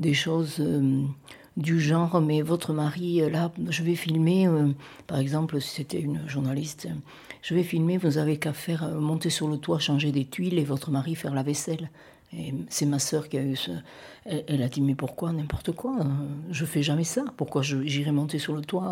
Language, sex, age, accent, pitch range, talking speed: French, female, 60-79, French, 145-180 Hz, 225 wpm